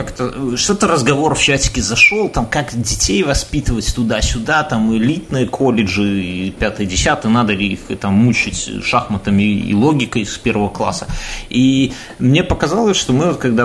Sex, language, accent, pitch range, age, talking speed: male, Russian, native, 105-140 Hz, 30-49, 145 wpm